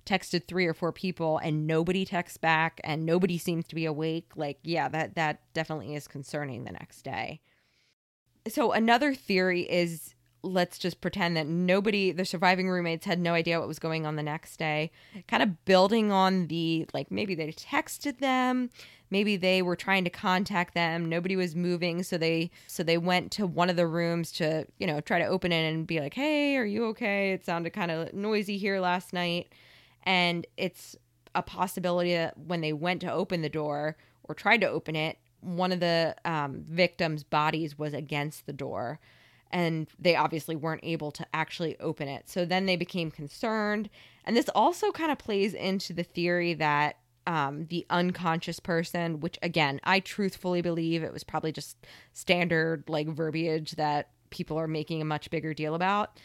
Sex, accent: female, American